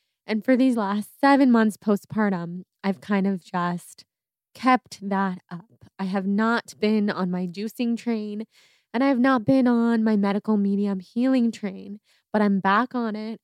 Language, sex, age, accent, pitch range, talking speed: English, female, 20-39, American, 195-235 Hz, 165 wpm